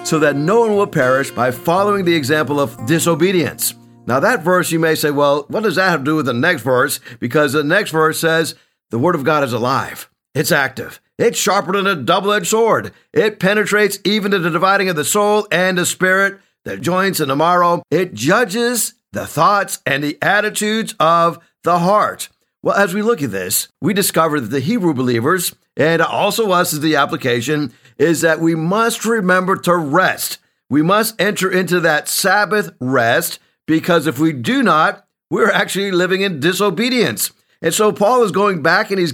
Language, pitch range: English, 155-200 Hz